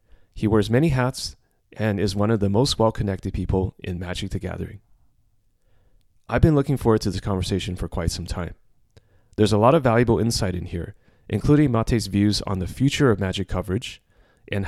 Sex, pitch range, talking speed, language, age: male, 95-115 Hz, 185 wpm, English, 30-49